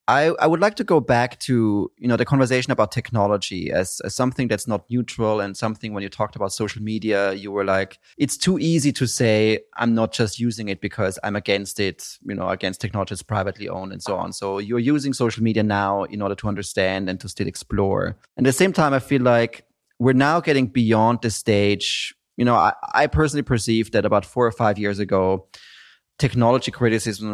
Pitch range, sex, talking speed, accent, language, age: 100-120 Hz, male, 215 wpm, German, English, 30-49